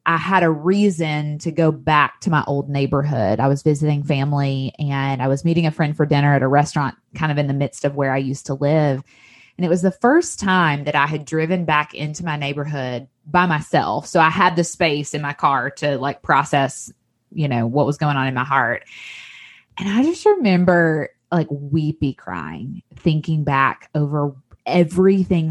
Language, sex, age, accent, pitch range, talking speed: English, female, 20-39, American, 140-165 Hz, 200 wpm